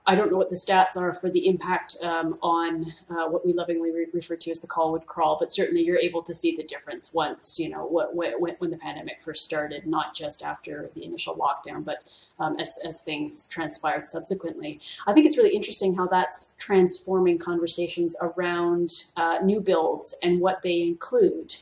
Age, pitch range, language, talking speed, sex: 30-49, 170-200 Hz, English, 200 wpm, female